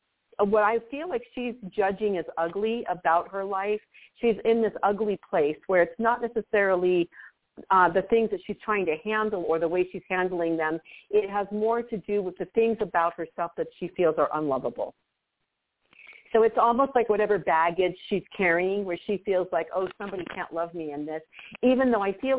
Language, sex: English, female